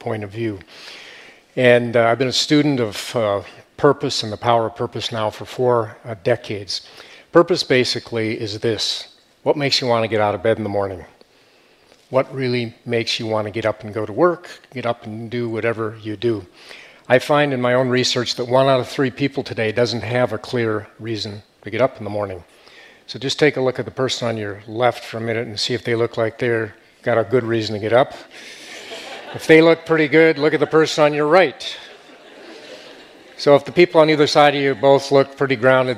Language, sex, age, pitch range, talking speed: English, male, 40-59, 115-140 Hz, 225 wpm